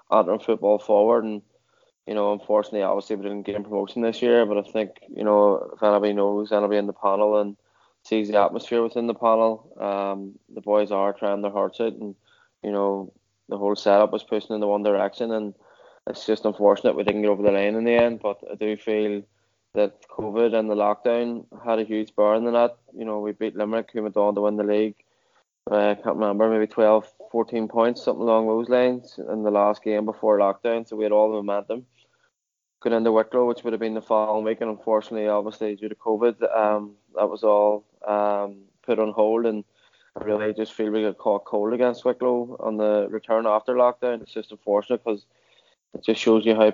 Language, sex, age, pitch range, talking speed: English, male, 20-39, 105-110 Hz, 215 wpm